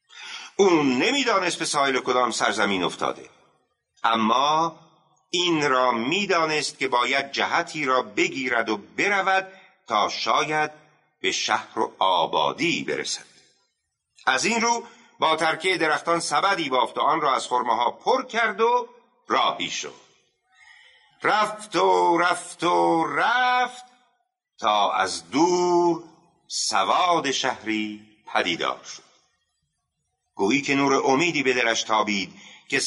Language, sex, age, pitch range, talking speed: Persian, male, 50-69, 140-230 Hz, 115 wpm